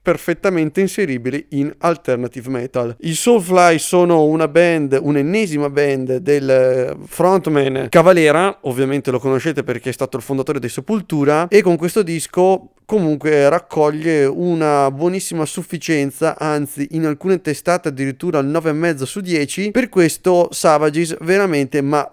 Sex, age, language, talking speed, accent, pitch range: male, 30-49, English, 135 wpm, Italian, 140-175 Hz